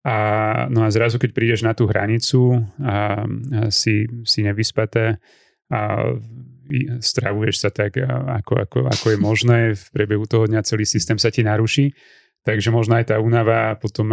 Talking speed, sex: 170 wpm, male